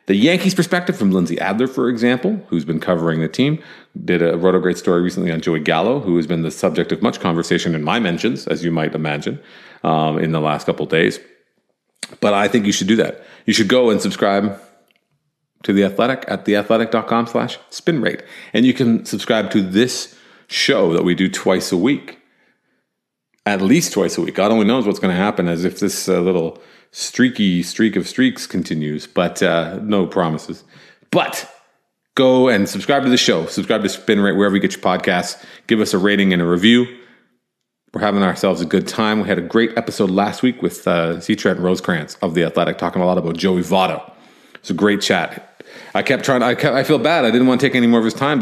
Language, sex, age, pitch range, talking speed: English, male, 40-59, 90-120 Hz, 215 wpm